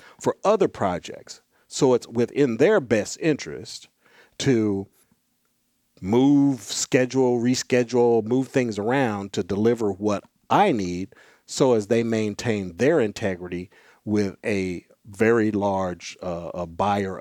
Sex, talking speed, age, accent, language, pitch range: male, 115 wpm, 50-69, American, English, 100-125 Hz